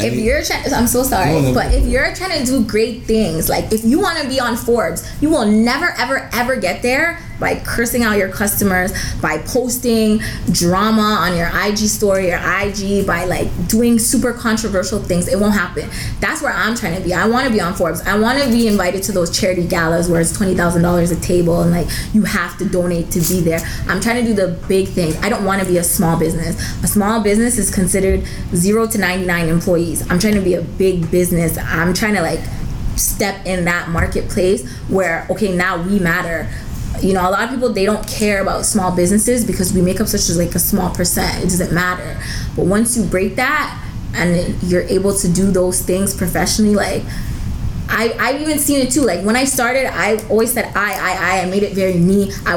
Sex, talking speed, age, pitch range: female, 220 wpm, 20-39, 180-220 Hz